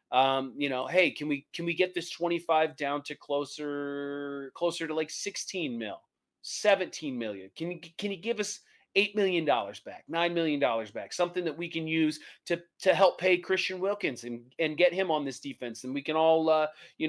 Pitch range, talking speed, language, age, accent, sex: 130-175 Hz, 200 wpm, English, 30-49, American, male